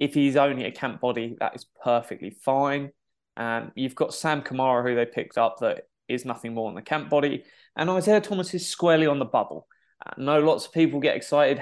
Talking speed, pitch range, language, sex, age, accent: 220 wpm, 120-150 Hz, English, male, 20-39, British